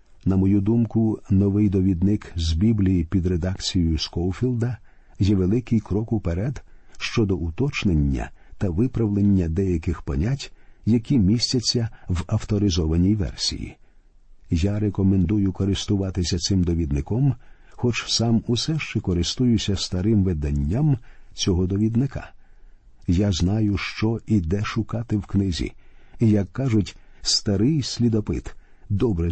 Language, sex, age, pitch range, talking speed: Ukrainian, male, 50-69, 90-115 Hz, 110 wpm